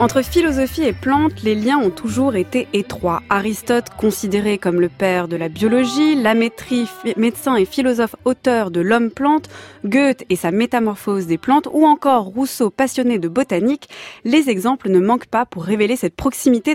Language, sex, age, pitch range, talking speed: French, female, 20-39, 205-275 Hz, 165 wpm